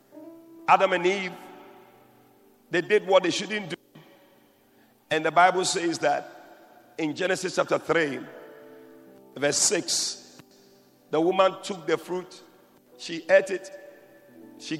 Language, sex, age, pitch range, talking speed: English, male, 50-69, 150-215 Hz, 120 wpm